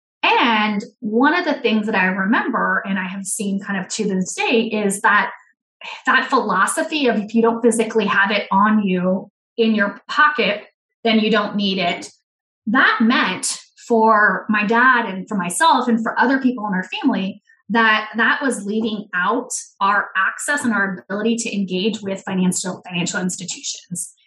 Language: English